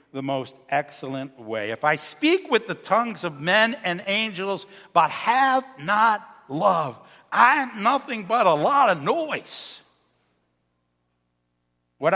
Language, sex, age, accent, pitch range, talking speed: English, male, 60-79, American, 135-210 Hz, 135 wpm